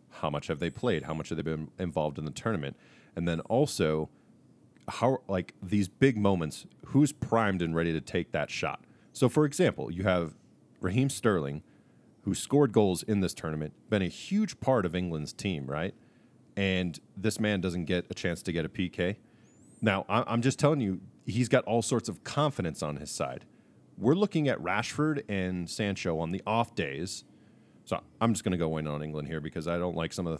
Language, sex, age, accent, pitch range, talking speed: English, male, 30-49, American, 85-115 Hz, 205 wpm